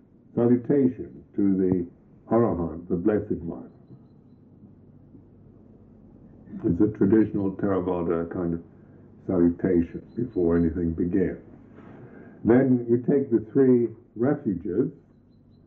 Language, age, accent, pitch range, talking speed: English, 60-79, American, 95-120 Hz, 90 wpm